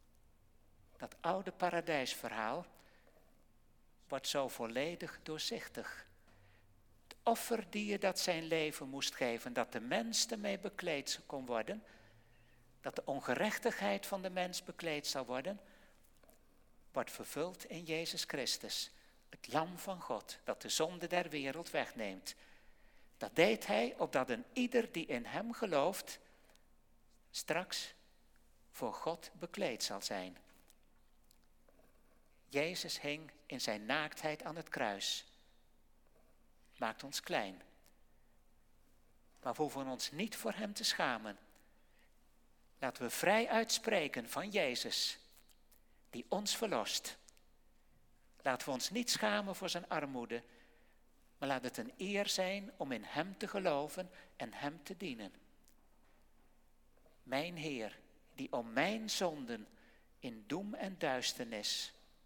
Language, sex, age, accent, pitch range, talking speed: Dutch, male, 60-79, Dutch, 135-200 Hz, 120 wpm